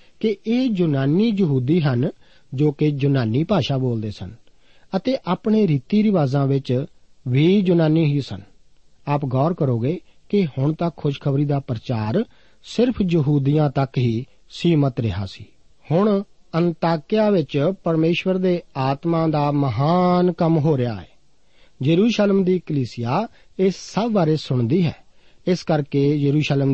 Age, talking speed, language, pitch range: 50-69, 130 wpm, Punjabi, 135-180 Hz